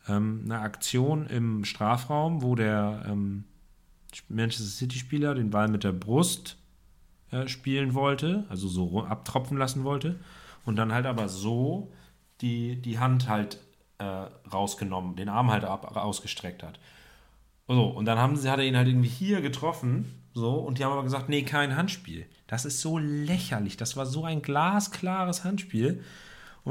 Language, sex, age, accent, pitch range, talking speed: German, male, 40-59, German, 100-135 Hz, 155 wpm